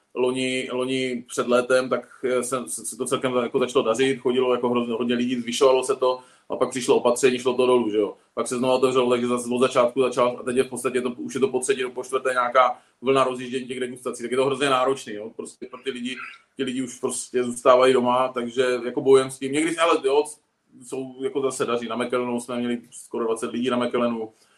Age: 20-39